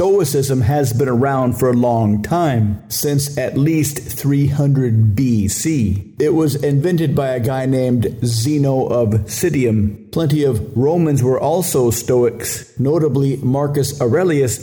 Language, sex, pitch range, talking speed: English, male, 115-145 Hz, 130 wpm